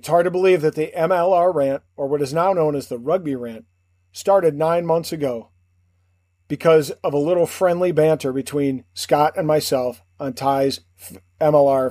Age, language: 40-59, English